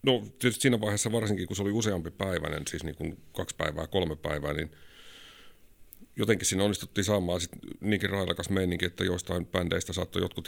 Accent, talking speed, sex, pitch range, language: native, 185 wpm, male, 85-105 Hz, Finnish